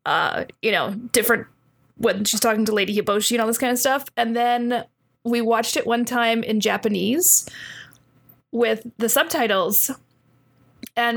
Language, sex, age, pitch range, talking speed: English, female, 20-39, 210-240 Hz, 155 wpm